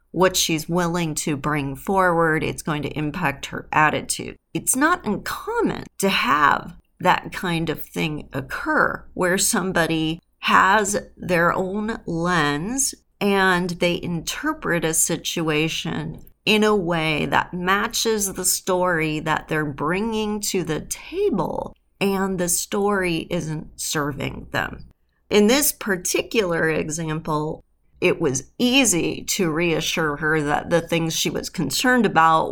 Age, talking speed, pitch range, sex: 40-59, 125 wpm, 160-210 Hz, female